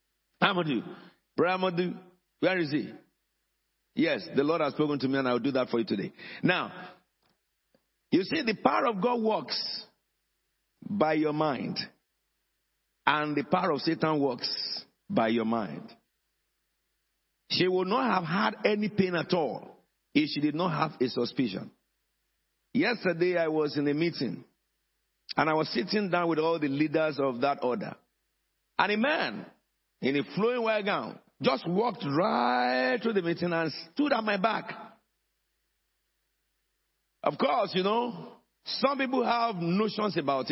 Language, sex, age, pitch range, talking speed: English, male, 50-69, 150-215 Hz, 150 wpm